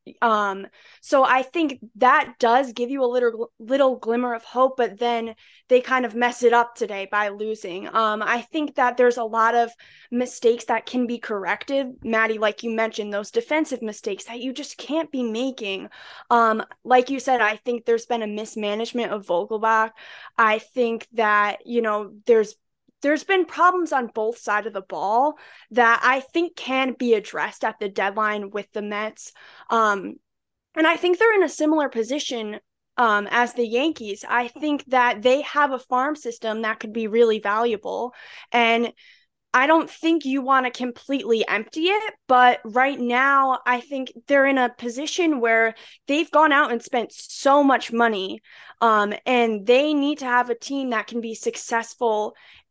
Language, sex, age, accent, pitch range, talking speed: English, female, 20-39, American, 225-270 Hz, 180 wpm